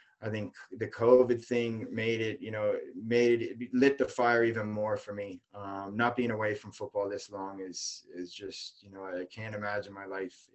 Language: English